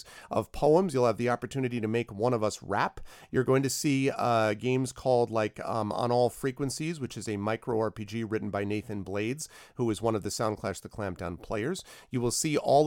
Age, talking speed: 40-59, 215 wpm